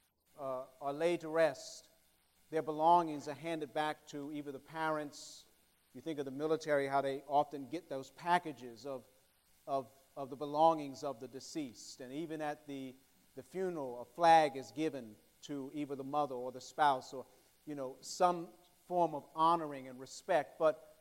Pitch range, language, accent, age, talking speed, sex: 135-190 Hz, English, American, 50-69, 170 wpm, male